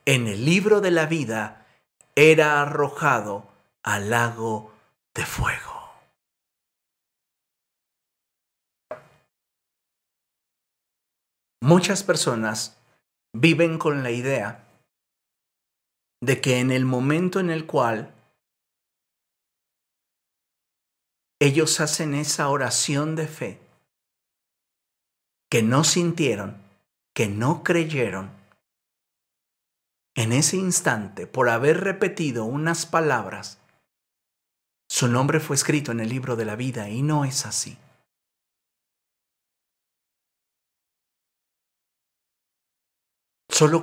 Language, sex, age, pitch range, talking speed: Spanish, male, 50-69, 110-155 Hz, 85 wpm